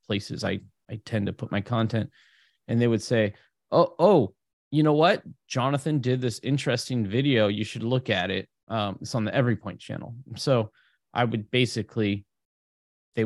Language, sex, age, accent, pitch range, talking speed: English, male, 30-49, American, 105-130 Hz, 170 wpm